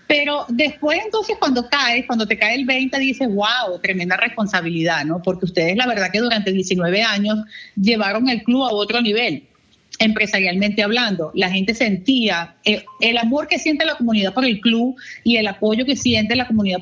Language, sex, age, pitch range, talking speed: English, female, 40-59, 210-260 Hz, 180 wpm